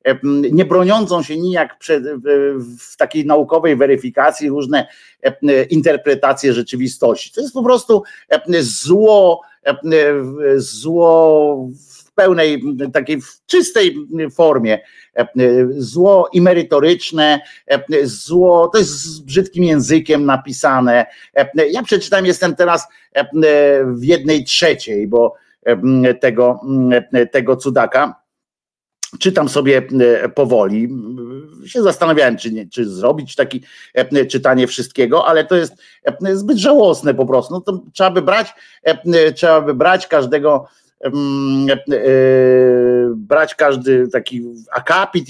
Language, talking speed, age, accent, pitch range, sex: Polish, 100 wpm, 50-69, native, 130-175 Hz, male